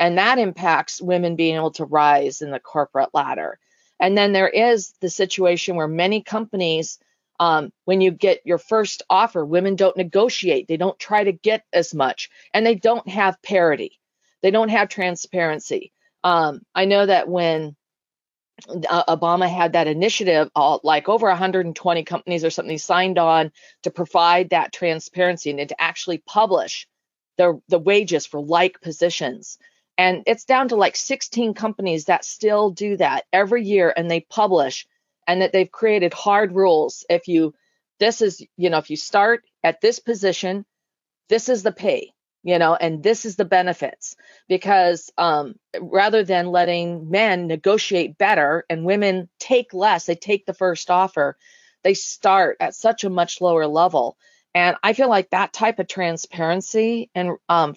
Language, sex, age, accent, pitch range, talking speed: English, female, 40-59, American, 170-210 Hz, 165 wpm